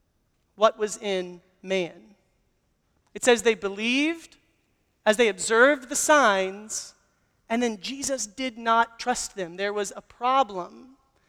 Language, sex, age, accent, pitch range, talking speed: English, male, 30-49, American, 190-240 Hz, 130 wpm